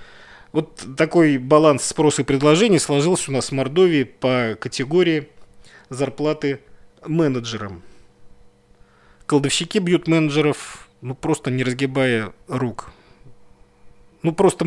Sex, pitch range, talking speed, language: male, 115-160 Hz, 100 wpm, Russian